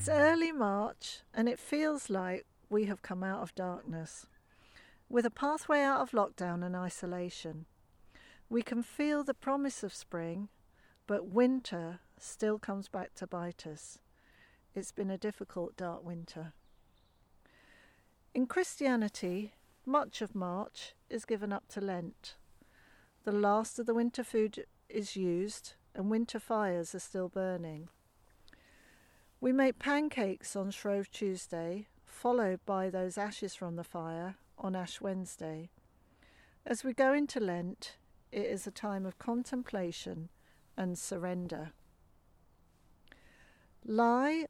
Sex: female